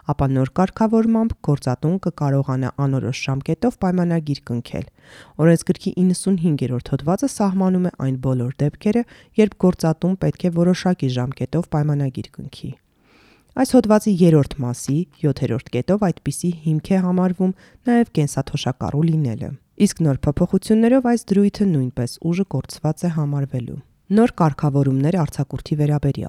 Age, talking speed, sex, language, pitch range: 30-49, 95 wpm, female, English, 135-185 Hz